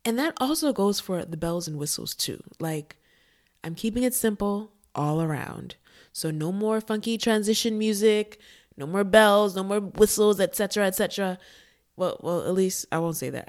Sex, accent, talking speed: female, American, 180 wpm